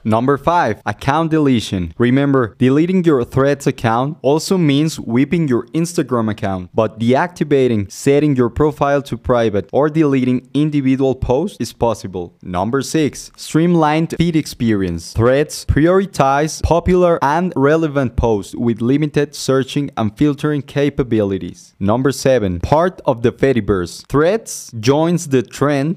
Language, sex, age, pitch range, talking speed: English, male, 20-39, 115-150 Hz, 125 wpm